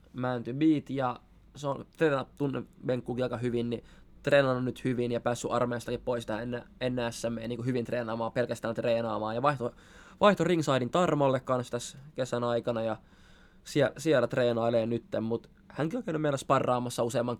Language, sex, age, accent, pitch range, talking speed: Finnish, male, 20-39, native, 120-155 Hz, 160 wpm